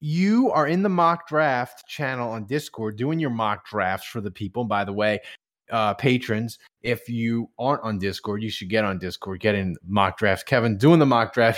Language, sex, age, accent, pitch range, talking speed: English, male, 20-39, American, 120-195 Hz, 205 wpm